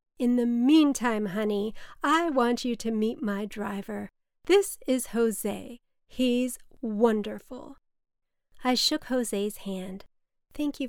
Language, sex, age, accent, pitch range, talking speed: English, female, 40-59, American, 200-235 Hz, 120 wpm